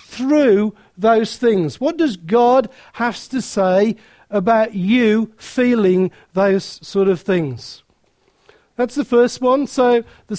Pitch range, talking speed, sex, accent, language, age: 205-255 Hz, 125 wpm, male, British, English, 50-69